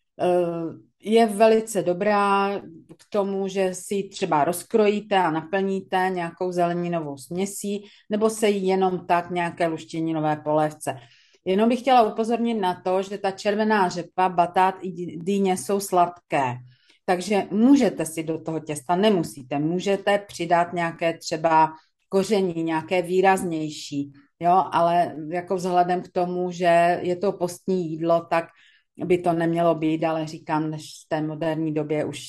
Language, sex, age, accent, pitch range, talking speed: Czech, female, 40-59, native, 165-195 Hz, 140 wpm